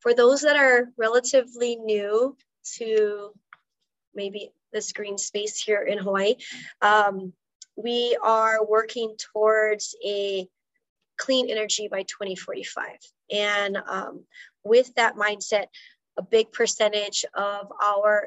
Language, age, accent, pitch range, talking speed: English, 20-39, American, 195-235 Hz, 110 wpm